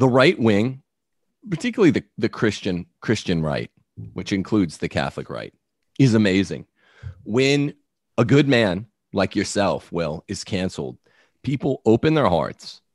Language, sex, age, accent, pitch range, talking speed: English, male, 40-59, American, 85-110 Hz, 135 wpm